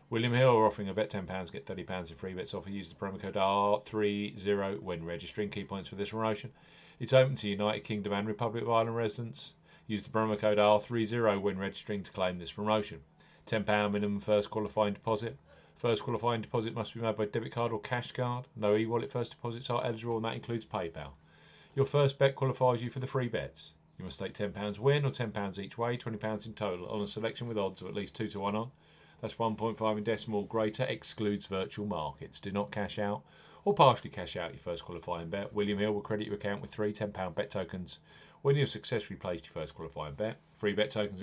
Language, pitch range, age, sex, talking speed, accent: English, 100-125 Hz, 40-59, male, 220 wpm, British